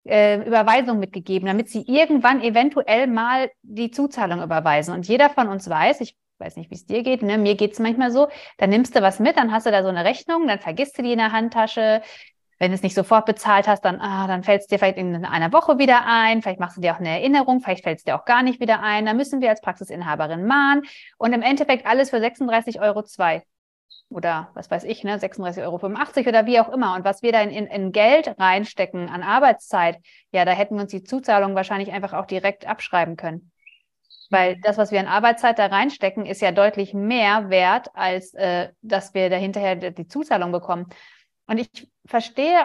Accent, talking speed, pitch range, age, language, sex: German, 215 wpm, 190-245 Hz, 30-49, German, female